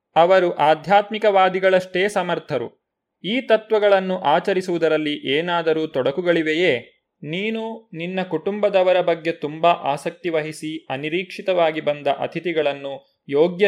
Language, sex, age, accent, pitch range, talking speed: Kannada, male, 20-39, native, 155-195 Hz, 85 wpm